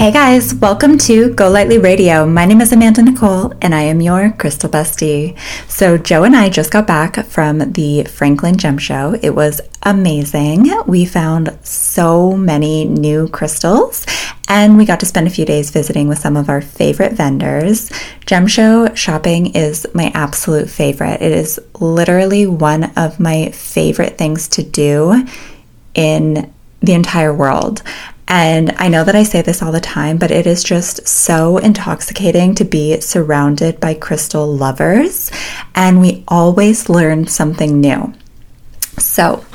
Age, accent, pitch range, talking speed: 20-39, American, 160-200 Hz, 160 wpm